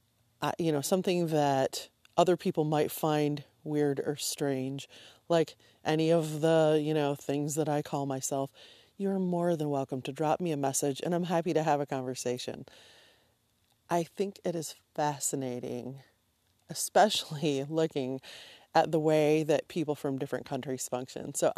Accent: American